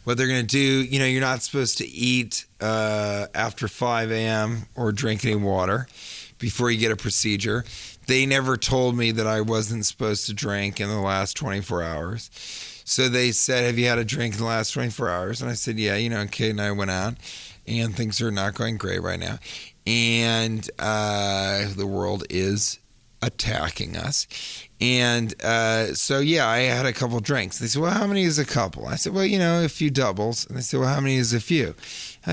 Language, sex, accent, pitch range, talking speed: English, male, American, 110-135 Hz, 215 wpm